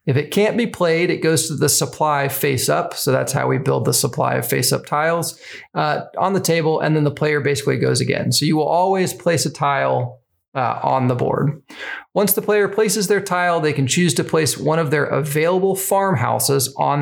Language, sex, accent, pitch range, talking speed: English, male, American, 135-170 Hz, 220 wpm